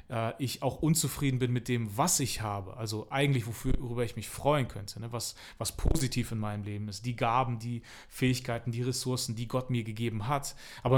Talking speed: 190 wpm